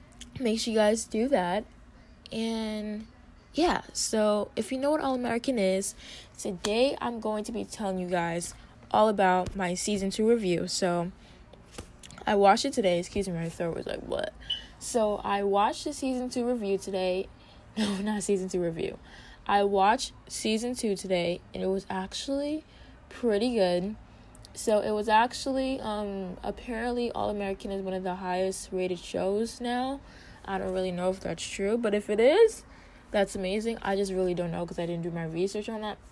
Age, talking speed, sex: 10-29, 175 wpm, female